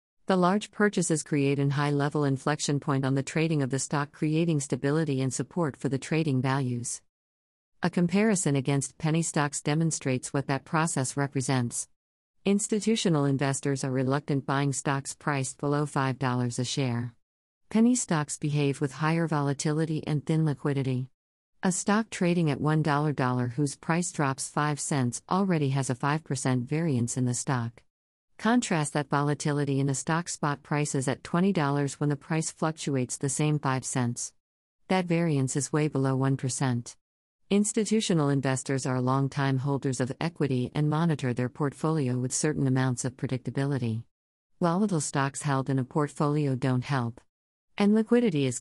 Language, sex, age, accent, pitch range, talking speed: English, female, 50-69, American, 130-155 Hz, 150 wpm